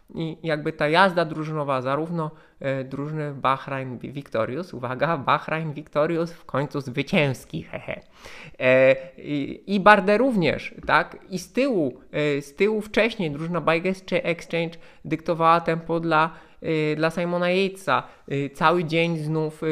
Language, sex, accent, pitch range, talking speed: Polish, male, native, 140-170 Hz, 135 wpm